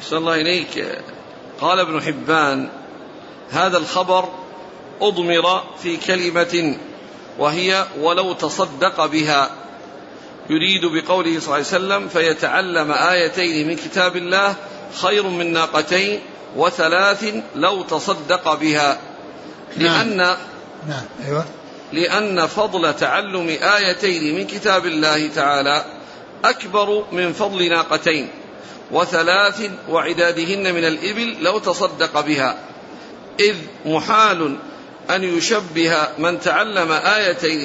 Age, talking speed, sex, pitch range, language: 50-69, 95 wpm, male, 165-195 Hz, Arabic